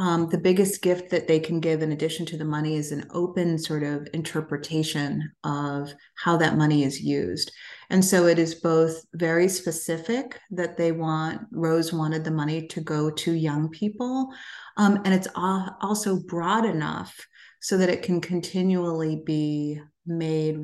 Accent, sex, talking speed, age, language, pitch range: American, female, 170 wpm, 30-49, English, 155-190 Hz